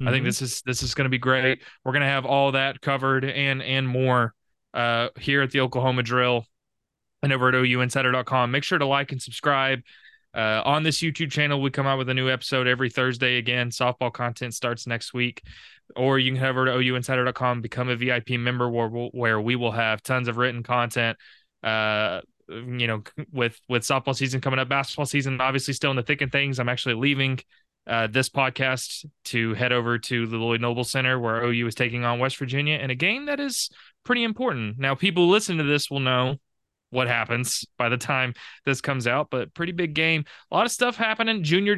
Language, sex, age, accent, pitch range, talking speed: English, male, 20-39, American, 120-140 Hz, 215 wpm